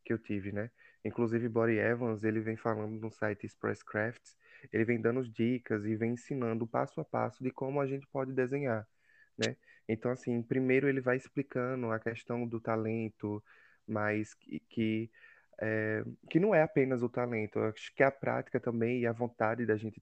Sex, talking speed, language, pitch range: male, 185 wpm, Portuguese, 115-135 Hz